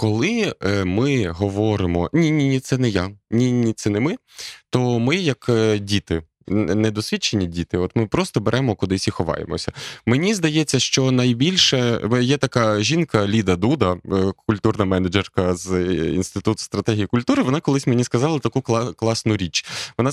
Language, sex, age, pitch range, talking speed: Ukrainian, male, 20-39, 105-140 Hz, 140 wpm